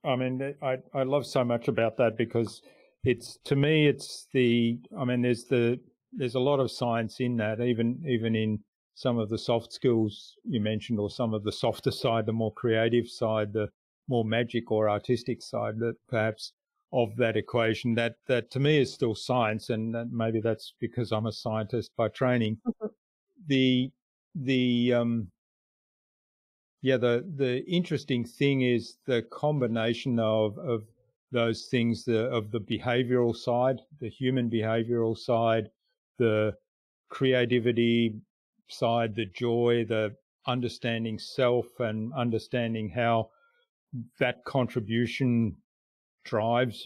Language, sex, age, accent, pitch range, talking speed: English, male, 50-69, Australian, 115-125 Hz, 140 wpm